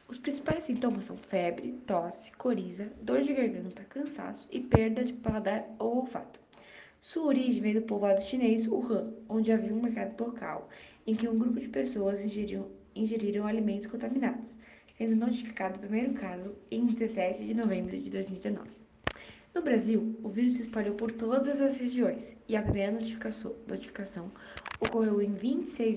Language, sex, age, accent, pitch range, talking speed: Portuguese, female, 10-29, Brazilian, 205-245 Hz, 160 wpm